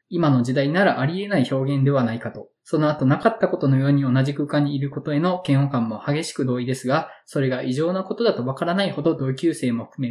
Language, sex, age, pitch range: Japanese, male, 20-39, 130-175 Hz